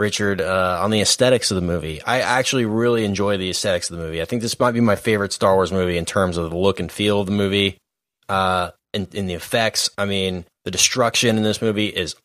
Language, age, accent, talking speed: English, 20-39, American, 245 wpm